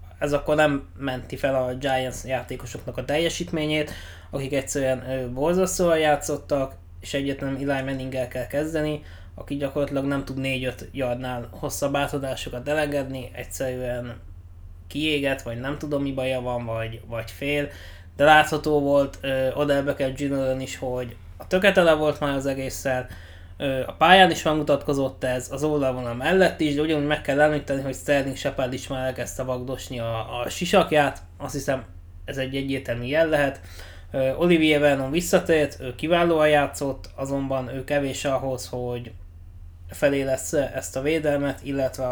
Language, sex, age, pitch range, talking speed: English, male, 20-39, 120-145 Hz, 150 wpm